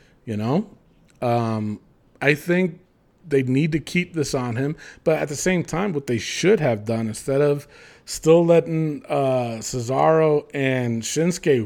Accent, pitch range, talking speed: American, 130-195 Hz, 155 wpm